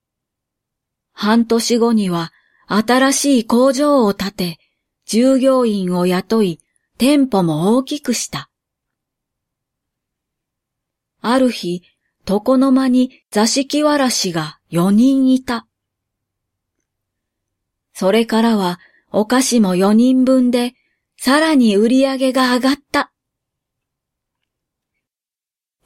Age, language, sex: 40-59, Japanese, female